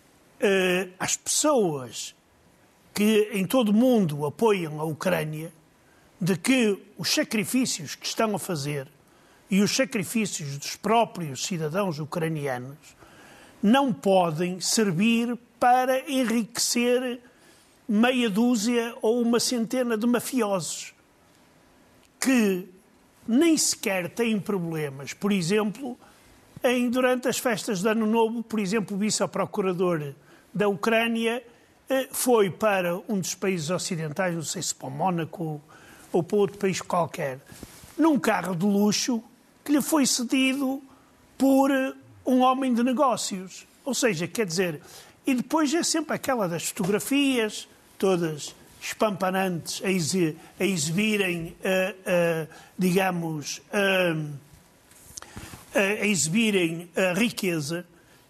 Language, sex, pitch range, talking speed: Portuguese, male, 180-240 Hz, 110 wpm